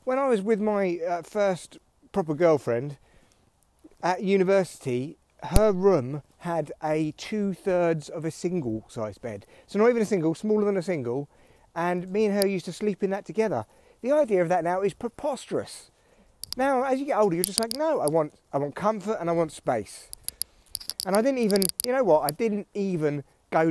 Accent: British